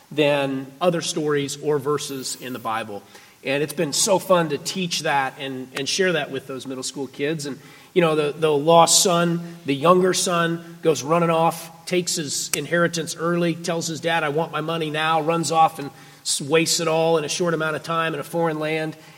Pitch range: 140-170 Hz